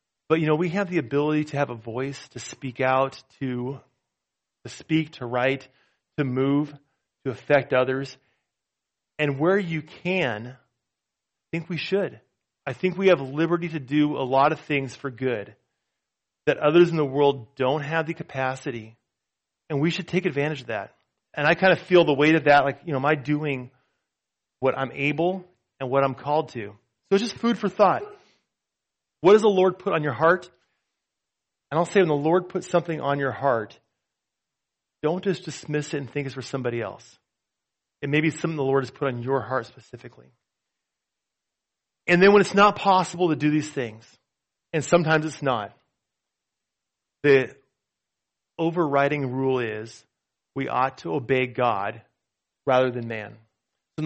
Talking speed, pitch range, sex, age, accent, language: 175 wpm, 130-165 Hz, male, 30-49, American, English